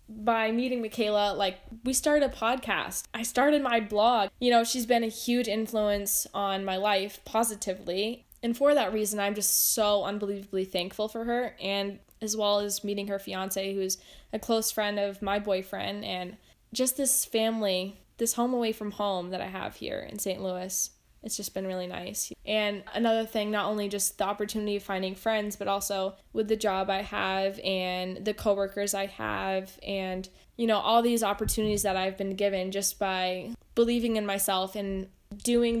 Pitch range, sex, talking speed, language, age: 195-230 Hz, female, 185 wpm, English, 10-29